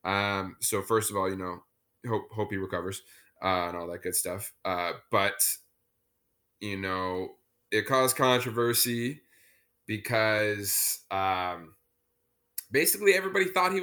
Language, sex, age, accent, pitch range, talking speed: English, male, 10-29, American, 105-125 Hz, 130 wpm